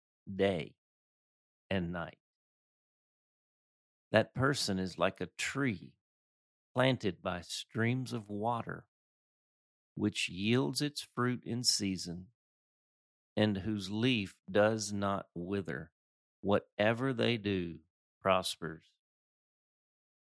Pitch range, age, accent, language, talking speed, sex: 90-115 Hz, 50-69, American, English, 90 wpm, male